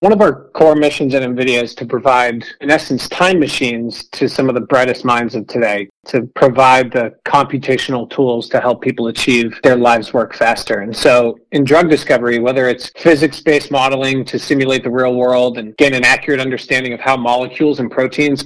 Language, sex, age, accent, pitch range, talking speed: English, male, 40-59, American, 120-140 Hz, 195 wpm